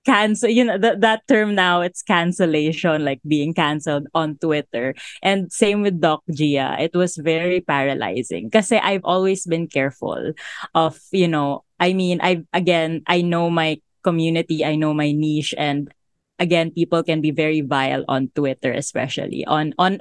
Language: English